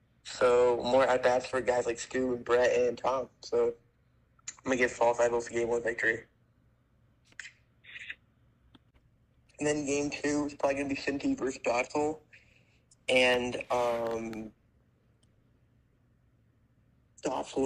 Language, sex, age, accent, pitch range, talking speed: English, male, 20-39, American, 120-140 Hz, 120 wpm